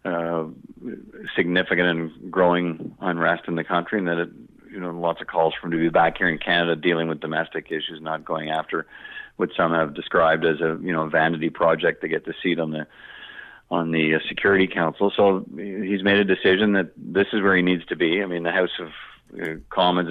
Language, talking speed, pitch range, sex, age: English, 210 wpm, 85-90 Hz, male, 40-59